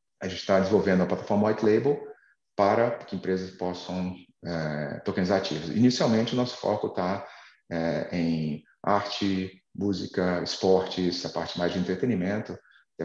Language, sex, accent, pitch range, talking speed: Portuguese, male, Brazilian, 80-95 Hz, 145 wpm